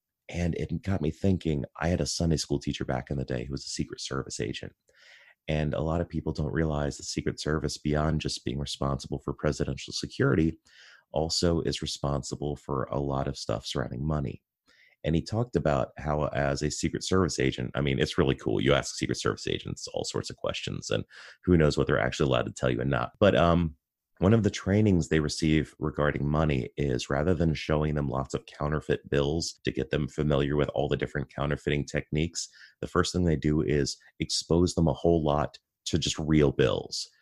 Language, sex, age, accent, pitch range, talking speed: English, male, 30-49, American, 70-85 Hz, 205 wpm